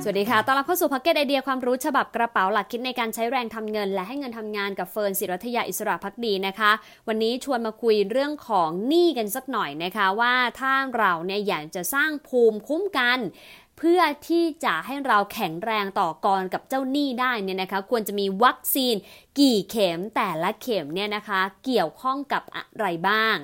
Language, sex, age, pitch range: English, female, 20-39, 190-250 Hz